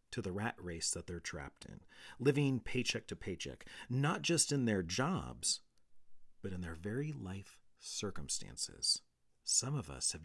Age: 40-59